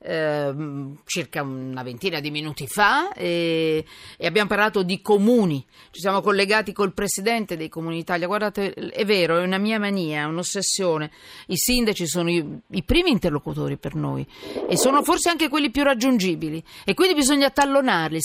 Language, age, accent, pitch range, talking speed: Italian, 40-59, native, 155-210 Hz, 160 wpm